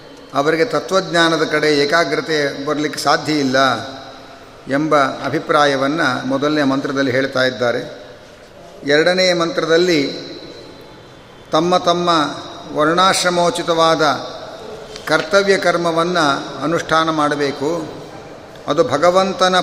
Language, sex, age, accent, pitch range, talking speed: Kannada, male, 50-69, native, 150-185 Hz, 75 wpm